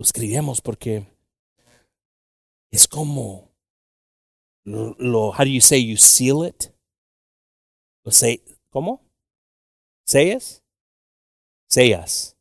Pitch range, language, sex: 90-125 Hz, English, male